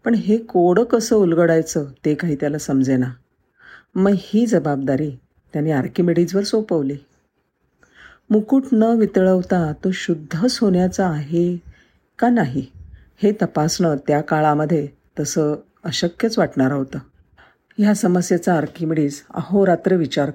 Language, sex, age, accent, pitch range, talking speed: Marathi, female, 50-69, native, 155-210 Hz, 110 wpm